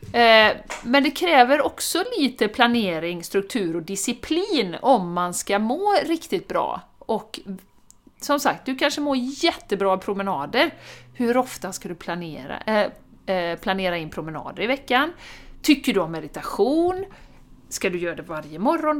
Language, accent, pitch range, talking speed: Swedish, native, 185-260 Hz, 135 wpm